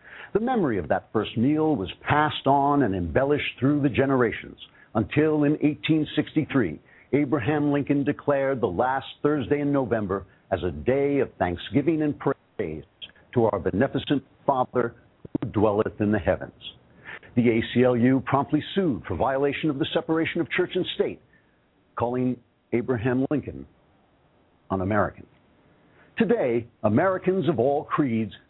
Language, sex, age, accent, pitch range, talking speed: English, male, 60-79, American, 115-150 Hz, 135 wpm